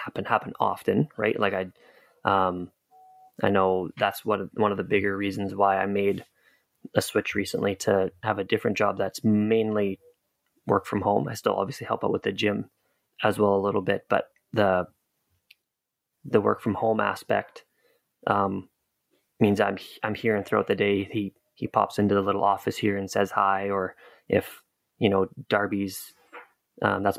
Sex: male